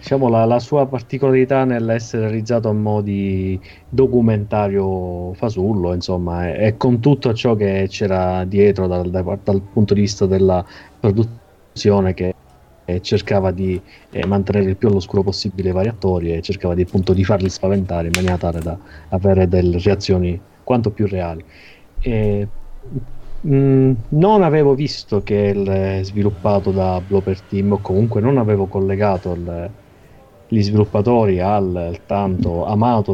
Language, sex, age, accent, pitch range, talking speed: Italian, male, 30-49, native, 95-120 Hz, 140 wpm